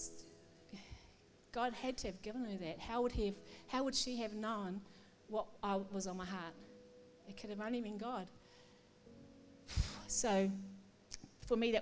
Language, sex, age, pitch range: English, female, 50-69, 195-245 Hz